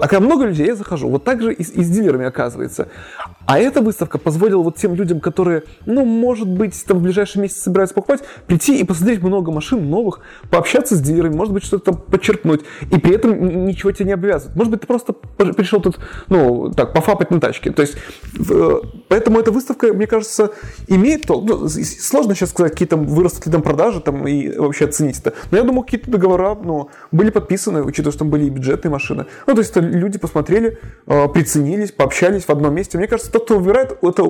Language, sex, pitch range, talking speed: Russian, male, 155-210 Hz, 215 wpm